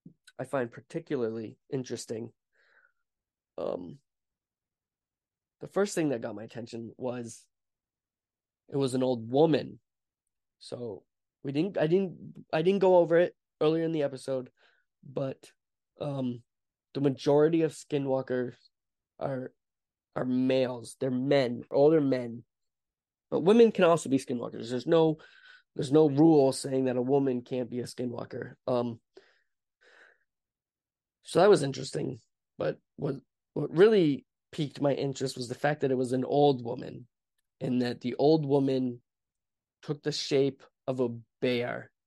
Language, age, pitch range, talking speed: English, 20-39, 120-150 Hz, 135 wpm